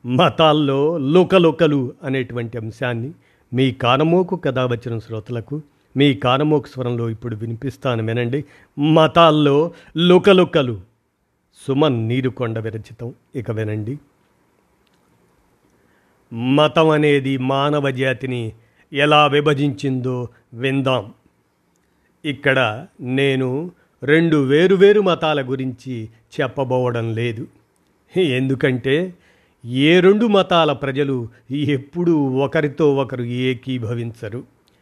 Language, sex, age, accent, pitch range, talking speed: Telugu, male, 50-69, native, 125-155 Hz, 80 wpm